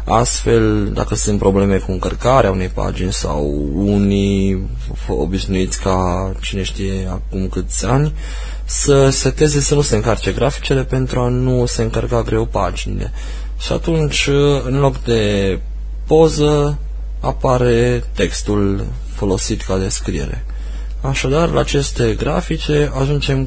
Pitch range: 95-135 Hz